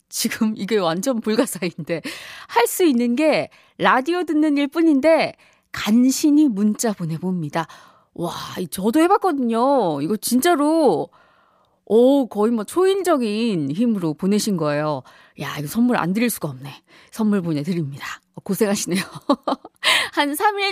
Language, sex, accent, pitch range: Korean, female, native, 185-295 Hz